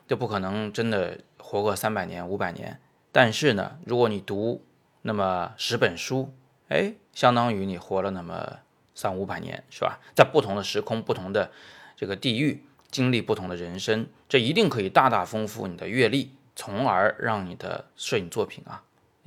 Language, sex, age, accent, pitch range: Chinese, male, 20-39, native, 95-125 Hz